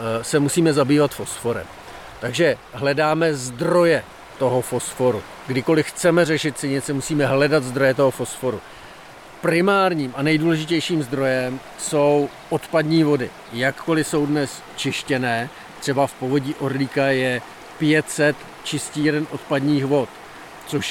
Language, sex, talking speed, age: Czech, male, 110 wpm, 40-59